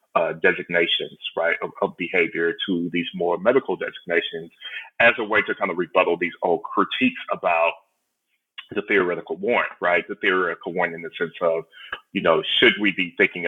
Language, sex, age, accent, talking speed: English, male, 30-49, American, 175 wpm